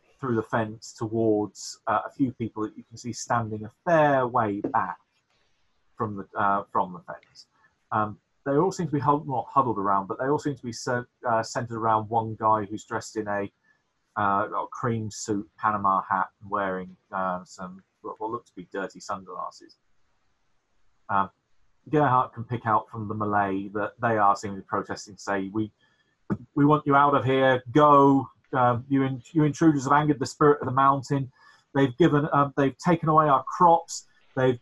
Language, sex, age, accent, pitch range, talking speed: English, male, 30-49, British, 110-145 Hz, 185 wpm